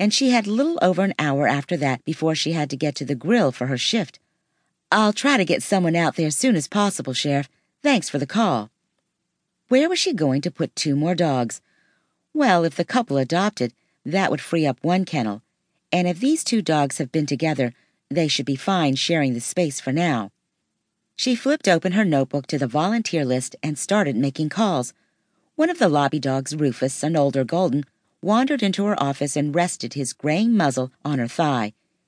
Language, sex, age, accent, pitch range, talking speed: English, female, 50-69, American, 140-195 Hz, 200 wpm